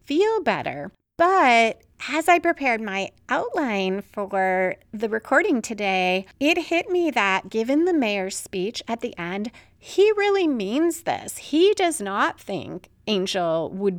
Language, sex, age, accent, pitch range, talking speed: English, female, 30-49, American, 195-280 Hz, 140 wpm